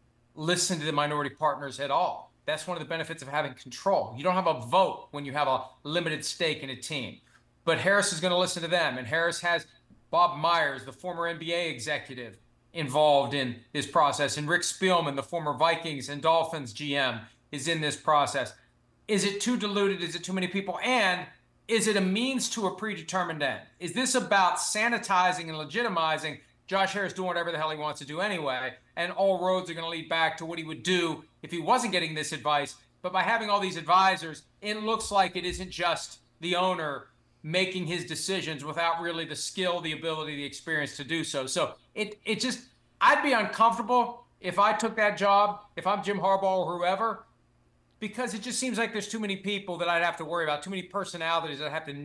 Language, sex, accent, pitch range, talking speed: English, male, American, 150-190 Hz, 210 wpm